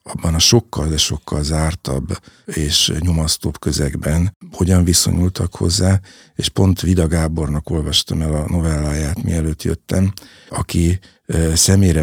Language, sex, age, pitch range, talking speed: Hungarian, male, 60-79, 75-90 Hz, 115 wpm